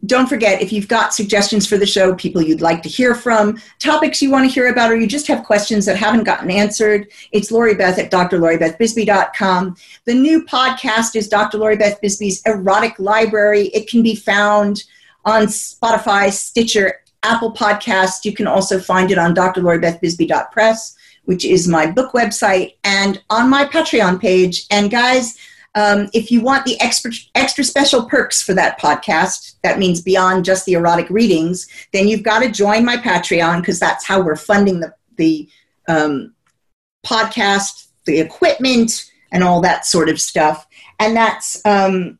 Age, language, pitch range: 50-69, English, 185-230 Hz